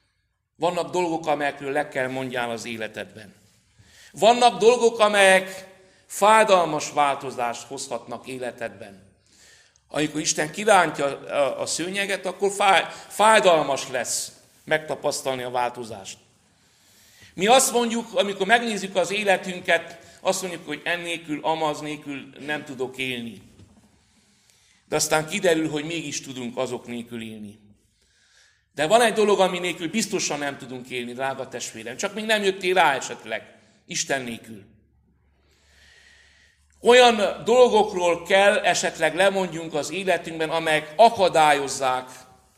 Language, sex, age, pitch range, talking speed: Hungarian, male, 60-79, 125-190 Hz, 110 wpm